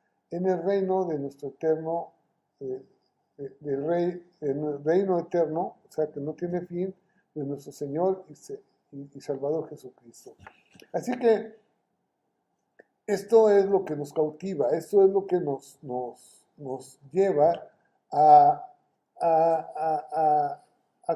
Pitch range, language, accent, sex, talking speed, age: 150-195 Hz, Spanish, Mexican, male, 120 wpm, 50-69